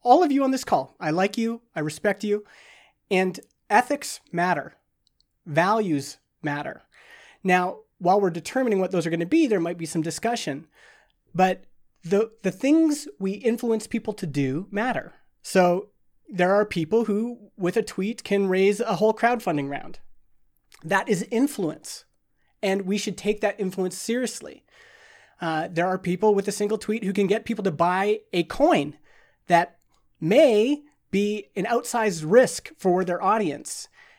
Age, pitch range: 30-49, 175-220 Hz